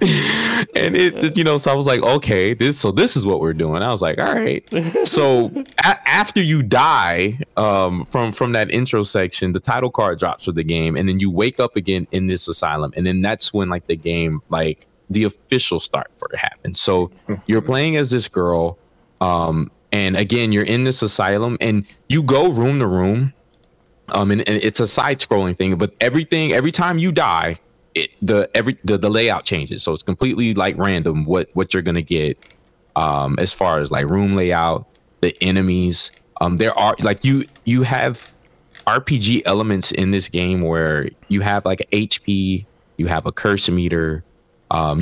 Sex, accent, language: male, American, English